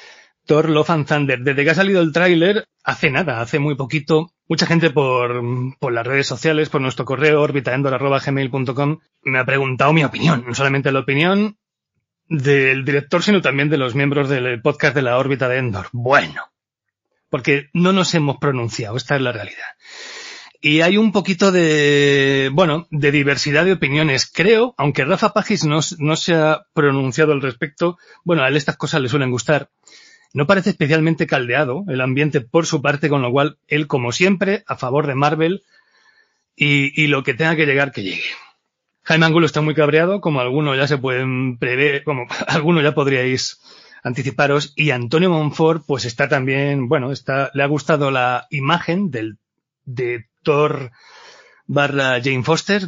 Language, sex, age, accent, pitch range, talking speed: Spanish, male, 30-49, Spanish, 135-160 Hz, 170 wpm